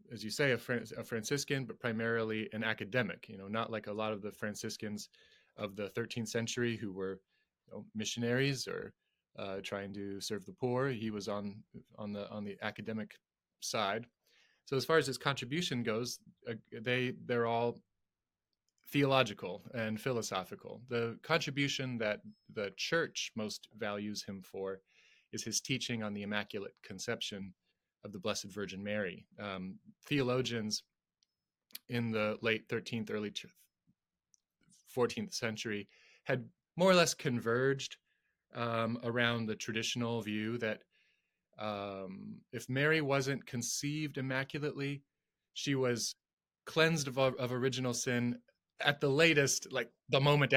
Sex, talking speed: male, 140 wpm